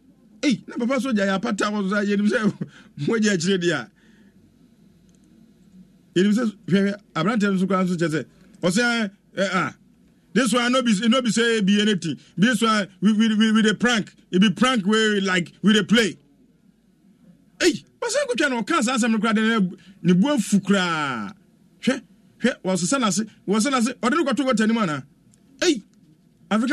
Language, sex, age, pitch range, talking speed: English, male, 50-69, 175-220 Hz, 125 wpm